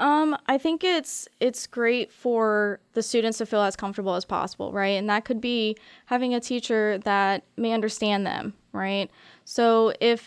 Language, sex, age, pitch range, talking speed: English, female, 10-29, 200-230 Hz, 175 wpm